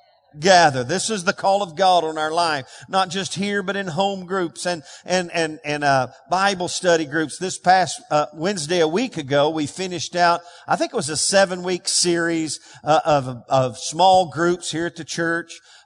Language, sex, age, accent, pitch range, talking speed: English, male, 50-69, American, 160-210 Hz, 195 wpm